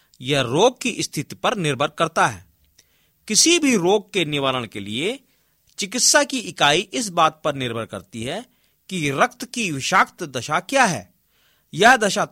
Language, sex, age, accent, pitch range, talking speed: Hindi, male, 50-69, native, 140-225 Hz, 160 wpm